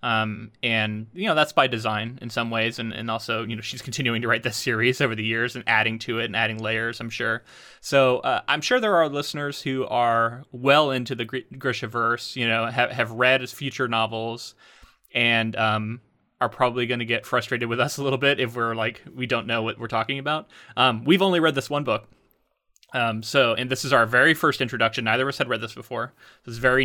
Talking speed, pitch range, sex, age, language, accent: 230 wpm, 115-135 Hz, male, 20-39, English, American